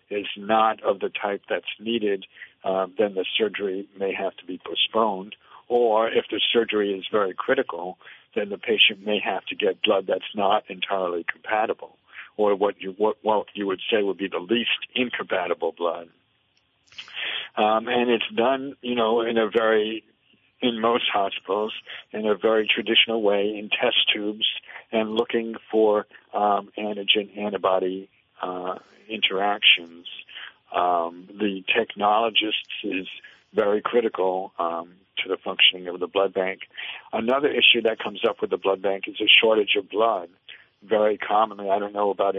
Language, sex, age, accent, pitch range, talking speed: English, male, 50-69, American, 95-115 Hz, 155 wpm